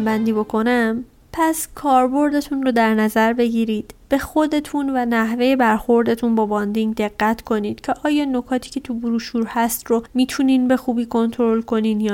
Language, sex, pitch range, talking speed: Persian, female, 225-275 Hz, 155 wpm